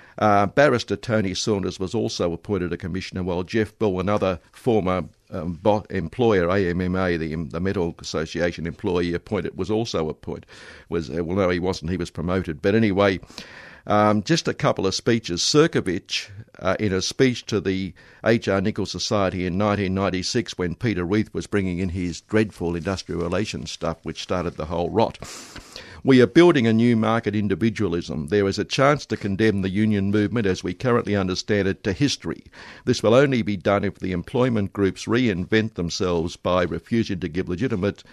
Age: 60-79